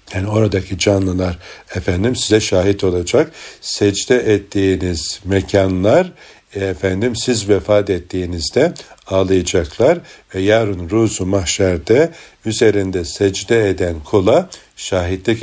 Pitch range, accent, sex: 95-110 Hz, native, male